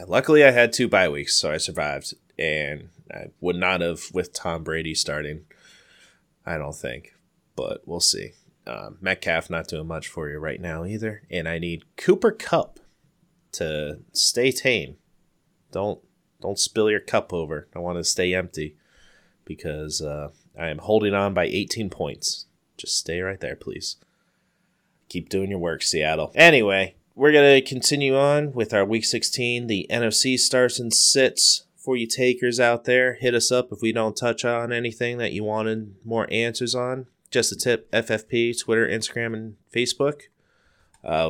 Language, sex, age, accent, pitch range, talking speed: English, male, 30-49, American, 95-125 Hz, 170 wpm